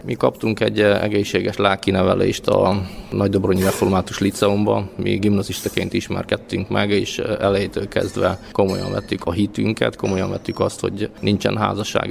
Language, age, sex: Hungarian, 20-39, male